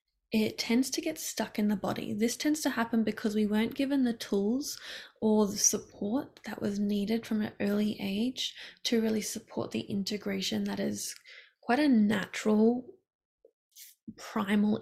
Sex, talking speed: female, 160 wpm